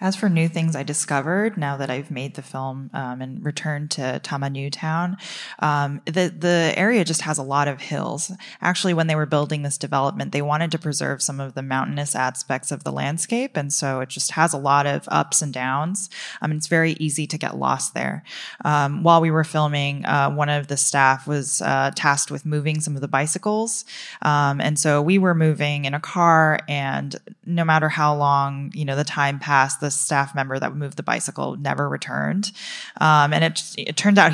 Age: 20-39